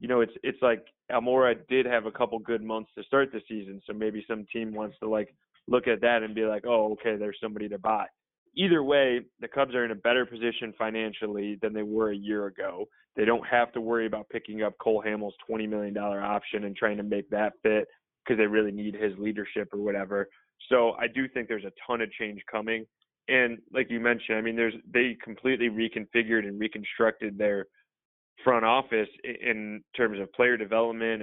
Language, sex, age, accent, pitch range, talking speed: English, male, 20-39, American, 105-120 Hz, 210 wpm